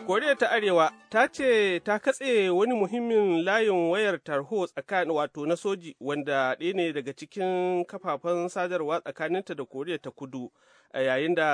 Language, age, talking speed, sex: English, 30-49, 145 wpm, male